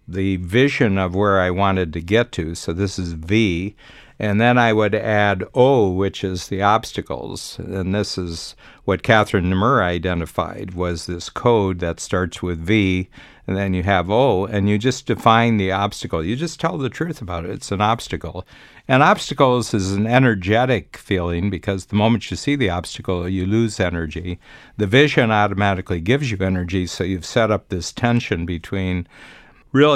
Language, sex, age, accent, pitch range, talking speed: English, male, 60-79, American, 90-120 Hz, 175 wpm